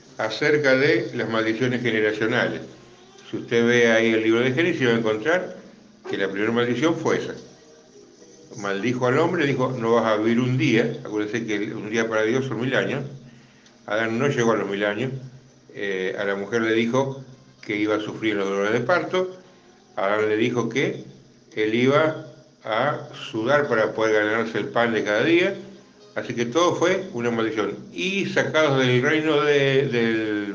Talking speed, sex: 175 wpm, male